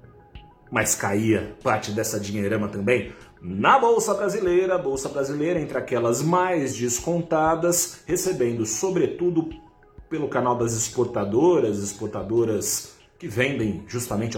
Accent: Brazilian